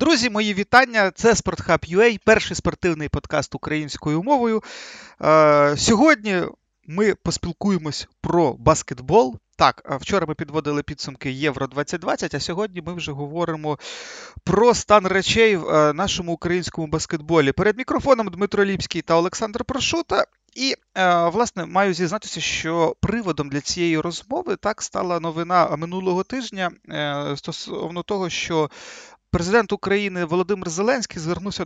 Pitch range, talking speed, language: 155-205 Hz, 120 wpm, Ukrainian